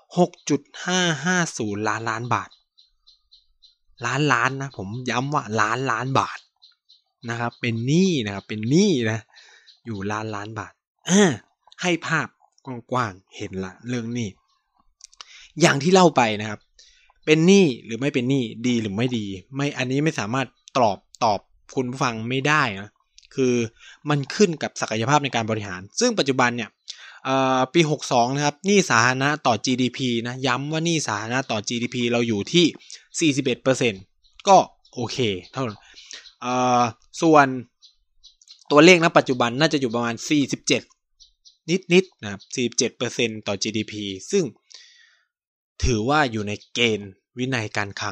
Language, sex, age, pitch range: Thai, male, 20-39, 110-150 Hz